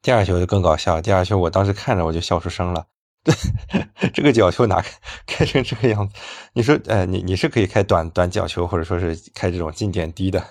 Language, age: Chinese, 20-39